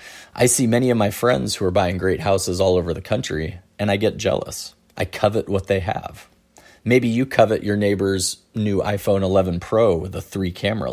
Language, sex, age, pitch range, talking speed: English, male, 30-49, 90-110 Hz, 205 wpm